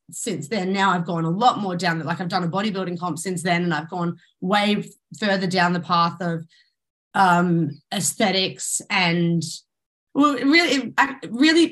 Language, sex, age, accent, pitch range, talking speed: English, female, 20-39, Australian, 170-235 Hz, 170 wpm